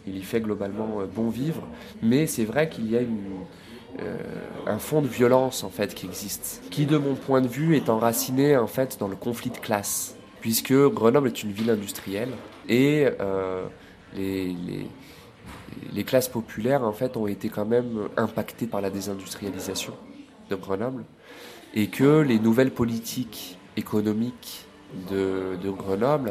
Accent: French